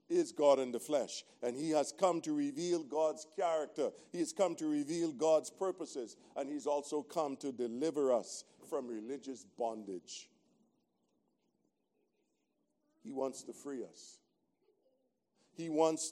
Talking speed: 140 wpm